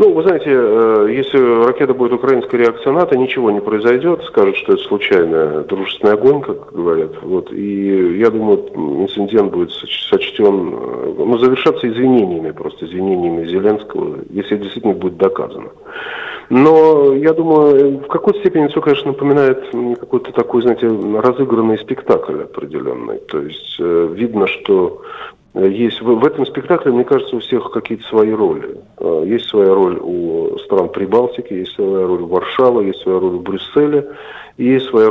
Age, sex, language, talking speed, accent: 40-59, male, Russian, 150 wpm, native